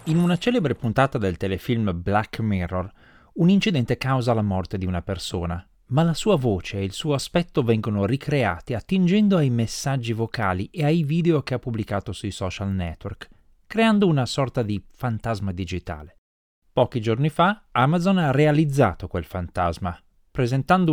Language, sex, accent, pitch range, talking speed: Italian, male, native, 105-165 Hz, 155 wpm